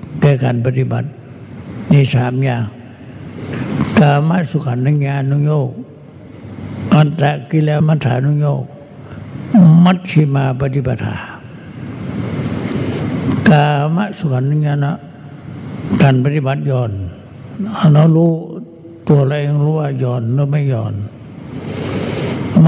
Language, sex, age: Thai, male, 60-79